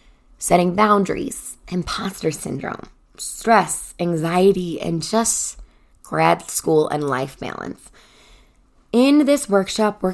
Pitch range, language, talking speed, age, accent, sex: 160-225 Hz, English, 100 wpm, 20-39, American, female